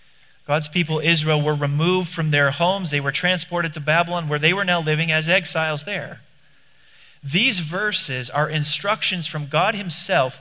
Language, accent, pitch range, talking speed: English, American, 140-175 Hz, 160 wpm